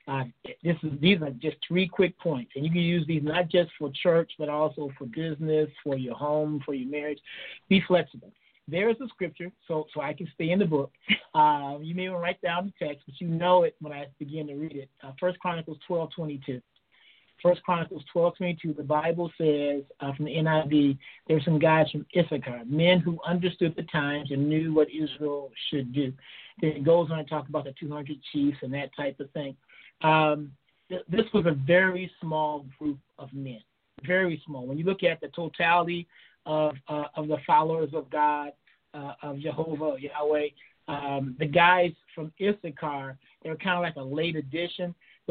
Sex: male